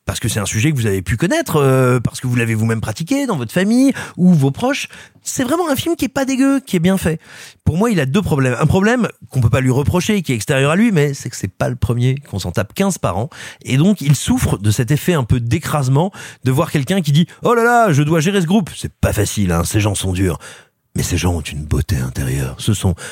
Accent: French